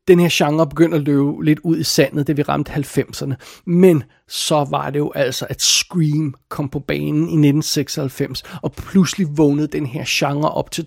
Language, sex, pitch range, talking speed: Danish, male, 145-165 Hz, 195 wpm